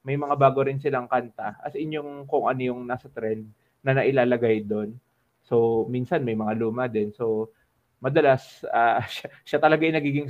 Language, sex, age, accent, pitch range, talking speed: Filipino, male, 20-39, native, 115-140 Hz, 180 wpm